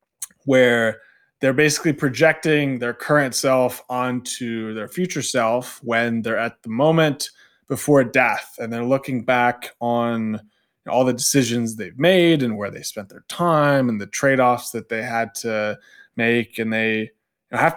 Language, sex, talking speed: English, male, 150 wpm